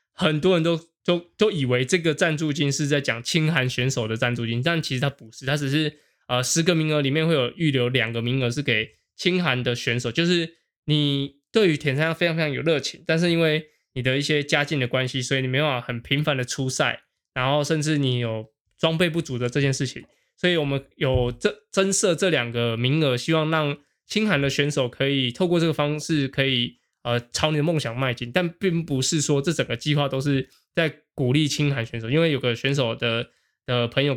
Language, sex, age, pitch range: Chinese, male, 20-39, 130-160 Hz